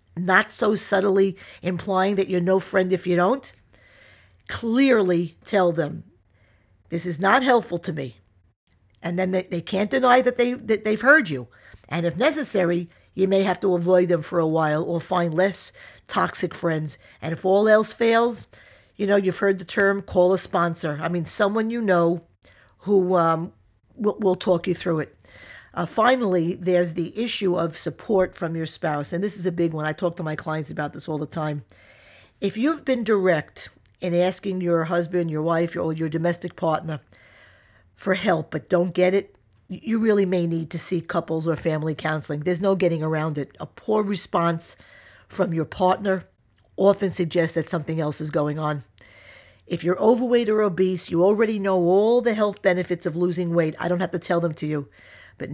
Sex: female